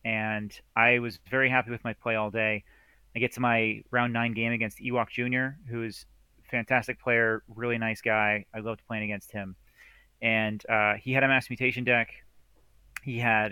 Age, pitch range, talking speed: 30-49, 105-125 Hz, 190 wpm